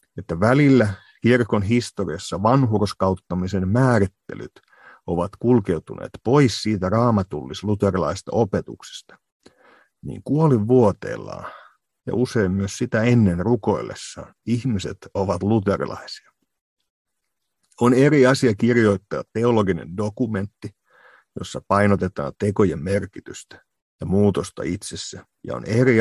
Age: 50-69